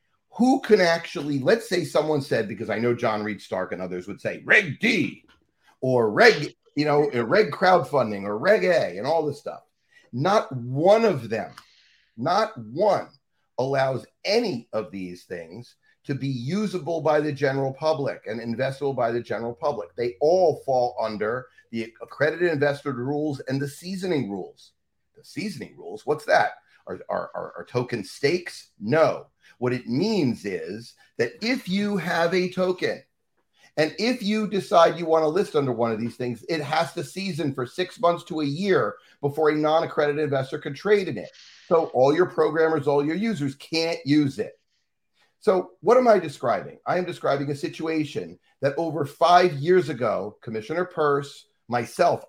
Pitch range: 130-170 Hz